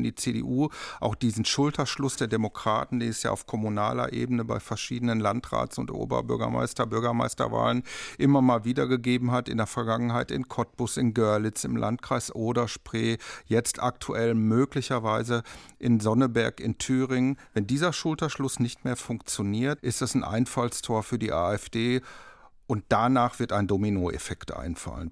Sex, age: male, 50-69